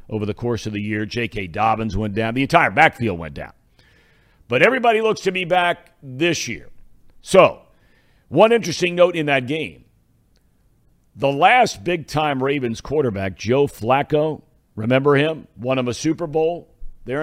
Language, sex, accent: English, male, American